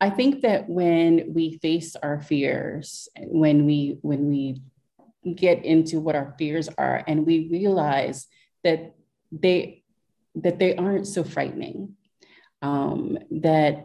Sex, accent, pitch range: female, American, 155-195 Hz